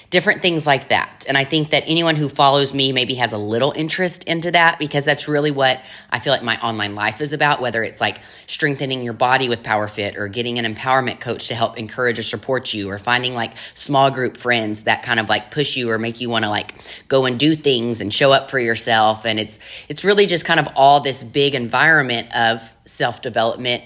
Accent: American